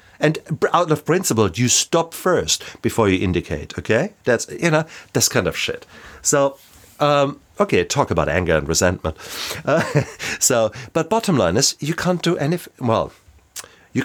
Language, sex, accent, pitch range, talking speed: English, male, German, 95-125 Hz, 160 wpm